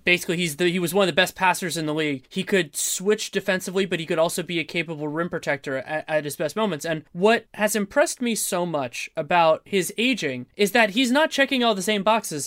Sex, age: male, 20-39